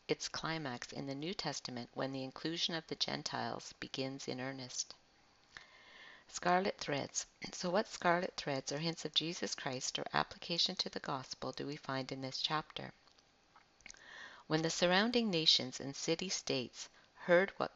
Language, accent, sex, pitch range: English, American, female, 135-175 Hz